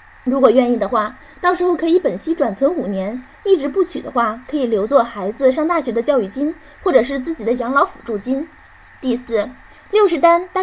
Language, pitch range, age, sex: Chinese, 230-300 Hz, 20-39, female